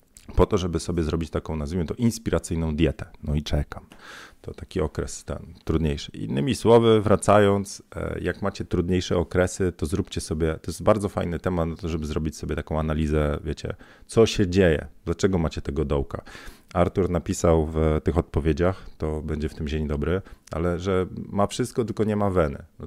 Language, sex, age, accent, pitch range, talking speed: Polish, male, 40-59, native, 75-95 Hz, 175 wpm